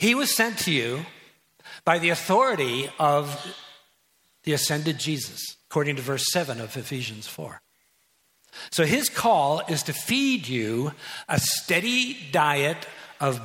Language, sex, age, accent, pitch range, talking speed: English, male, 60-79, American, 135-180 Hz, 135 wpm